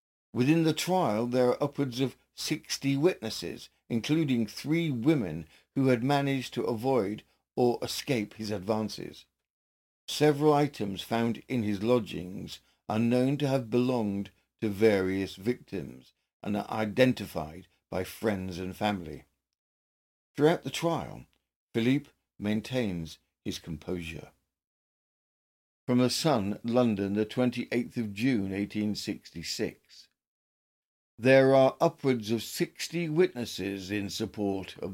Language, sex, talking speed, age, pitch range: English, male, 120 wpm, 60-79, 100-130 Hz